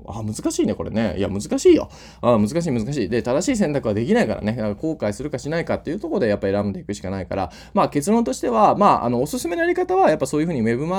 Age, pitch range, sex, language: 20-39, 100-150 Hz, male, Japanese